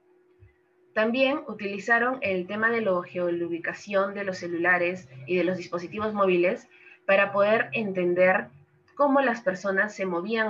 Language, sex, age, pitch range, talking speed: Spanish, female, 20-39, 175-205 Hz, 130 wpm